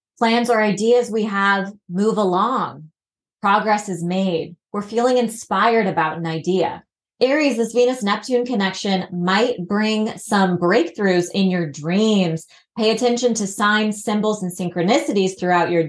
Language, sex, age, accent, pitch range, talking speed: English, female, 20-39, American, 180-225 Hz, 135 wpm